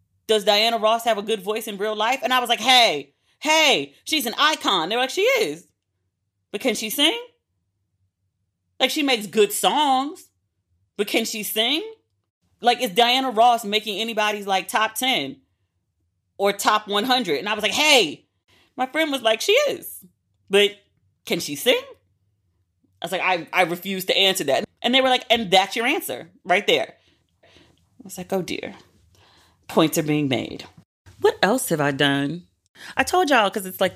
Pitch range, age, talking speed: 155-225 Hz, 30-49, 180 wpm